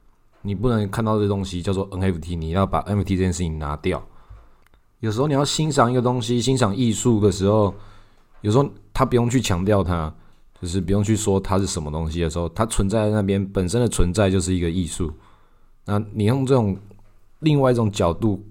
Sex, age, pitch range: male, 20-39, 95-110 Hz